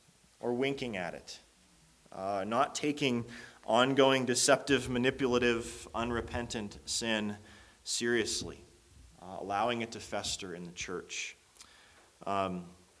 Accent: American